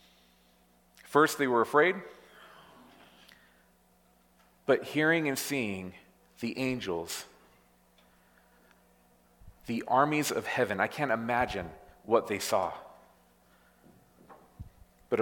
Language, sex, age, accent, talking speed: English, male, 40-59, American, 85 wpm